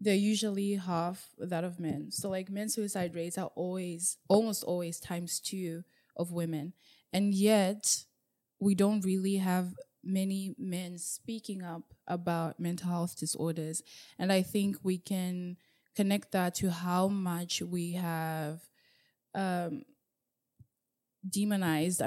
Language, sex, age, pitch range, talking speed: English, female, 20-39, 170-195 Hz, 130 wpm